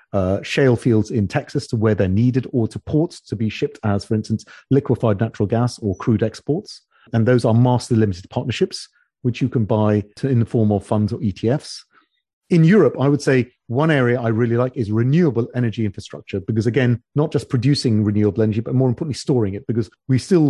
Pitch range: 110-130 Hz